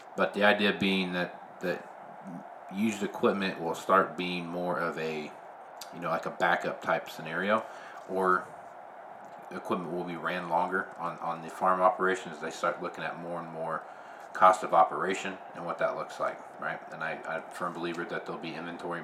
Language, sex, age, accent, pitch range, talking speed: English, male, 40-59, American, 85-95 Hz, 185 wpm